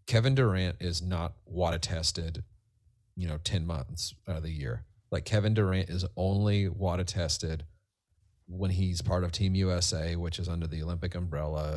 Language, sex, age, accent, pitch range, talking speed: English, male, 30-49, American, 85-100 Hz, 170 wpm